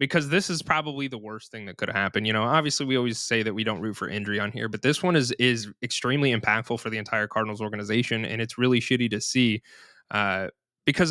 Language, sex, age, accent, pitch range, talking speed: English, male, 20-39, American, 110-130 Hz, 240 wpm